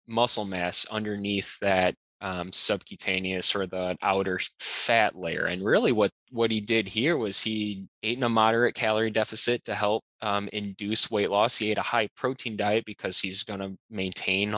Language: English